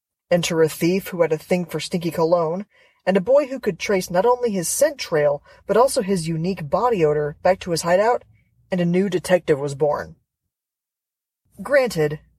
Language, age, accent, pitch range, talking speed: English, 20-39, American, 160-230 Hz, 185 wpm